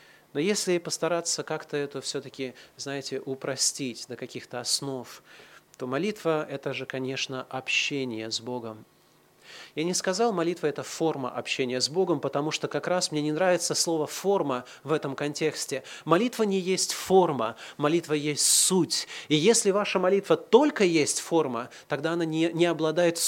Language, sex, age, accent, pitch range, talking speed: Russian, male, 30-49, native, 140-185 Hz, 150 wpm